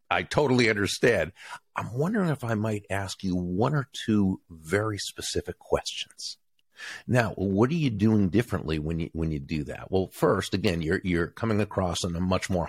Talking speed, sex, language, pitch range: 180 wpm, male, English, 90-115 Hz